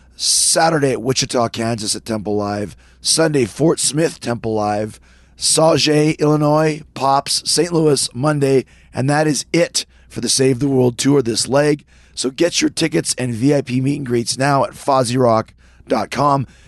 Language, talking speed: English, 150 wpm